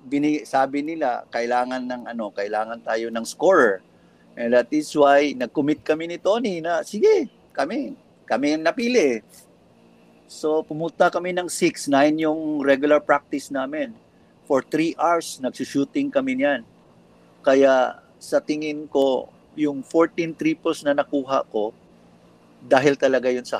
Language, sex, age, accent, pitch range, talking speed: English, male, 50-69, Filipino, 125-165 Hz, 135 wpm